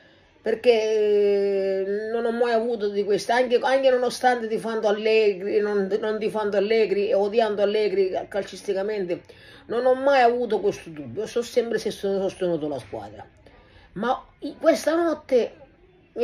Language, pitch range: Italian, 200-275 Hz